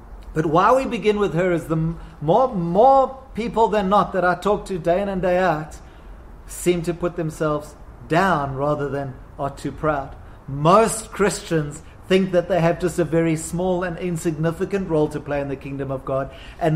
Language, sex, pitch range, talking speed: English, male, 155-195 Hz, 190 wpm